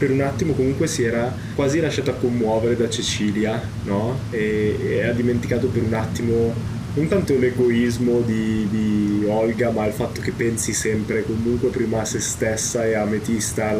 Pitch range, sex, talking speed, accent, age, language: 110-125 Hz, male, 170 wpm, native, 20-39, Italian